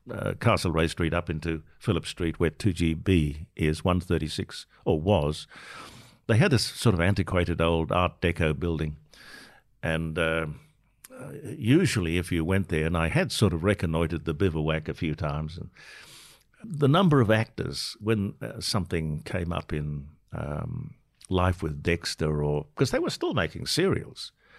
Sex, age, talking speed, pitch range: male, 60-79, 160 wpm, 80-105 Hz